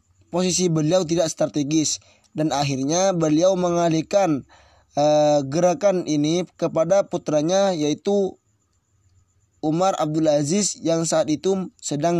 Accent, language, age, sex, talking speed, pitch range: native, Indonesian, 20-39, male, 105 wpm, 150-185 Hz